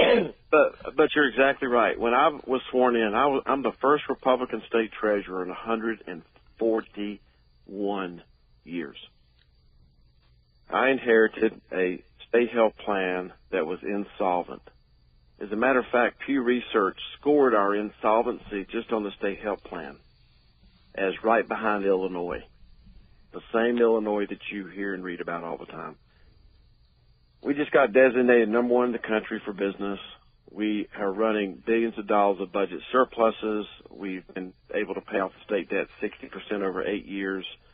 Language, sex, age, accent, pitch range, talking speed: English, male, 50-69, American, 95-115 Hz, 155 wpm